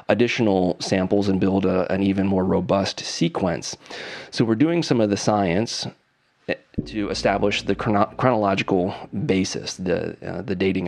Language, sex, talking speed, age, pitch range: English, male, 140 wpm, 30-49, 95-110 Hz